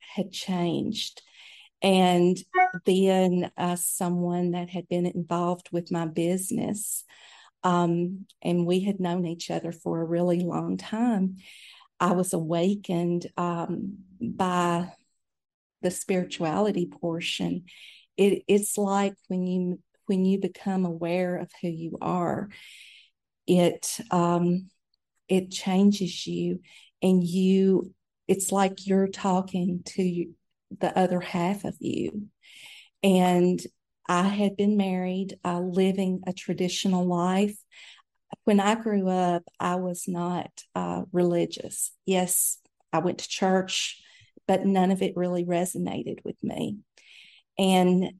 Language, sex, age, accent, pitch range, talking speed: English, female, 40-59, American, 175-195 Hz, 120 wpm